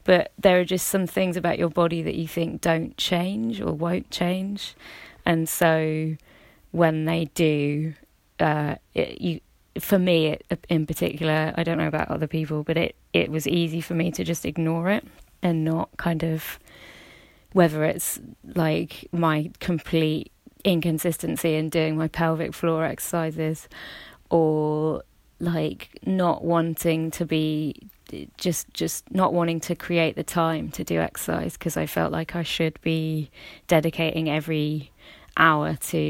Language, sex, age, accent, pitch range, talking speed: English, female, 20-39, British, 155-170 Hz, 145 wpm